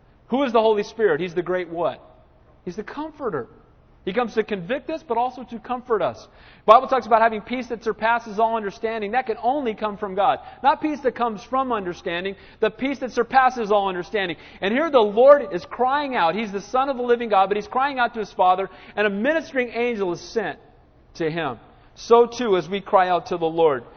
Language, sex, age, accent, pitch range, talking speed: English, male, 40-59, American, 160-225 Hz, 220 wpm